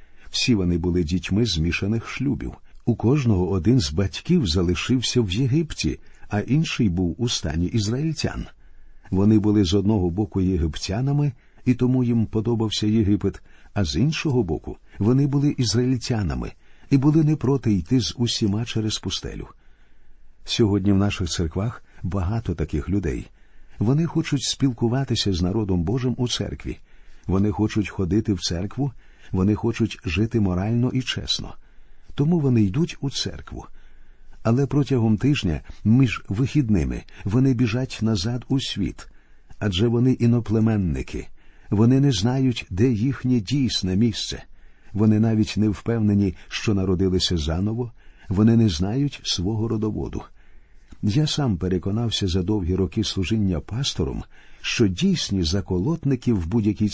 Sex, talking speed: male, 130 wpm